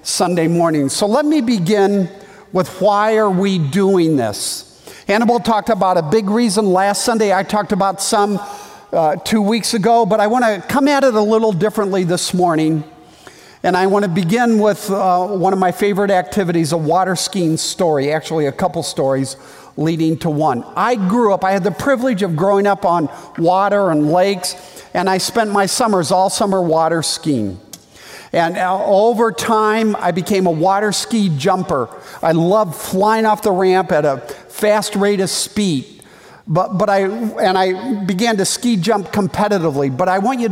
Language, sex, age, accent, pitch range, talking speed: English, male, 50-69, American, 180-215 Hz, 180 wpm